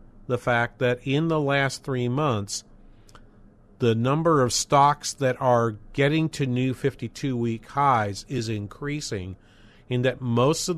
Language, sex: English, male